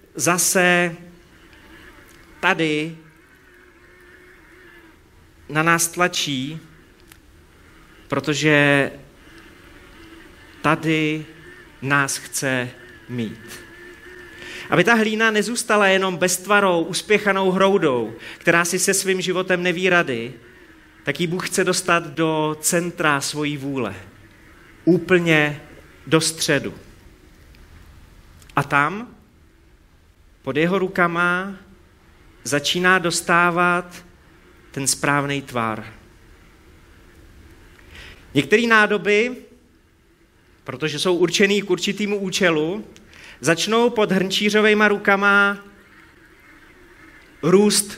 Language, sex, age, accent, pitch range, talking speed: Czech, male, 30-49, native, 120-190 Hz, 75 wpm